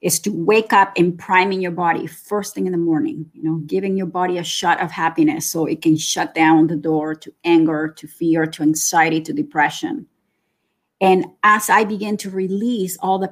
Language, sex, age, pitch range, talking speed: English, female, 30-49, 160-195 Hz, 205 wpm